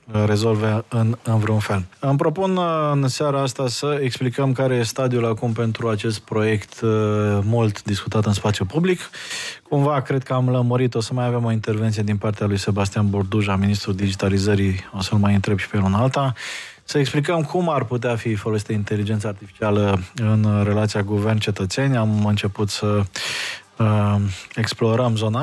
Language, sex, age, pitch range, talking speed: Romanian, male, 20-39, 105-130 Hz, 165 wpm